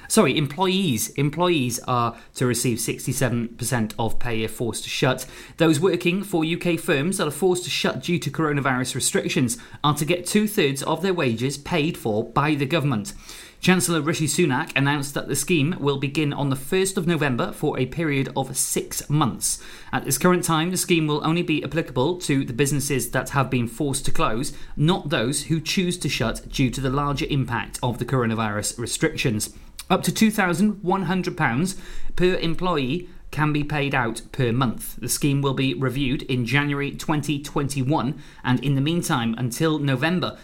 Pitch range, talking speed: 125-160 Hz, 175 wpm